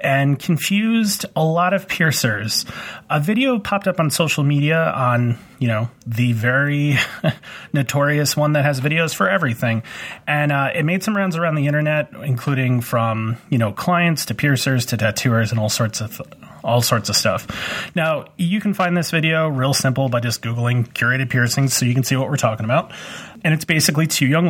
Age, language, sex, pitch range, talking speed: 30-49, English, male, 120-160 Hz, 185 wpm